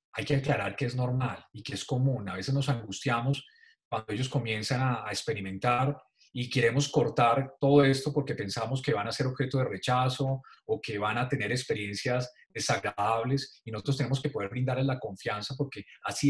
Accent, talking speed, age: Colombian, 190 wpm, 30-49